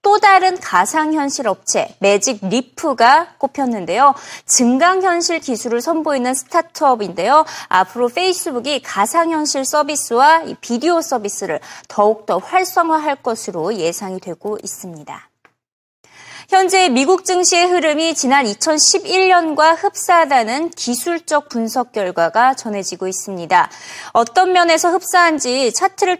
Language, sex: Korean, female